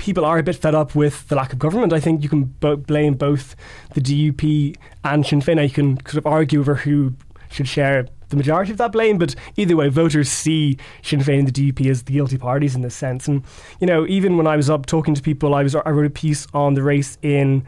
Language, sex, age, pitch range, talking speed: English, male, 20-39, 140-165 Hz, 260 wpm